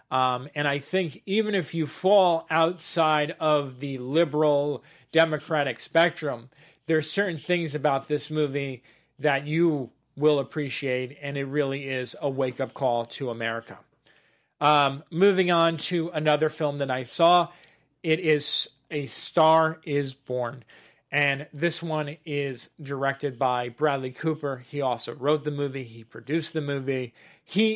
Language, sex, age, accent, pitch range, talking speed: English, male, 40-59, American, 140-165 Hz, 145 wpm